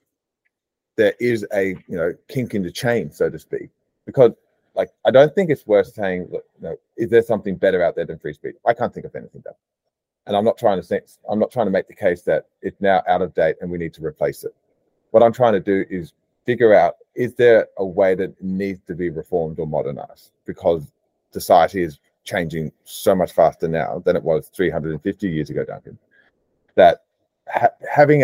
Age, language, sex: 30-49, English, male